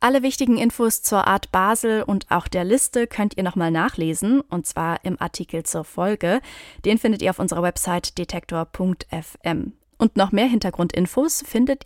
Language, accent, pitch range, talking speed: German, German, 180-225 Hz, 160 wpm